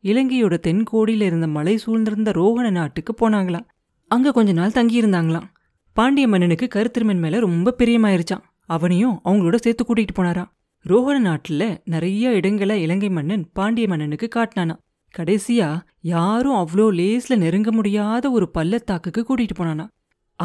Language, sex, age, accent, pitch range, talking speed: Tamil, female, 30-49, native, 175-230 Hz, 125 wpm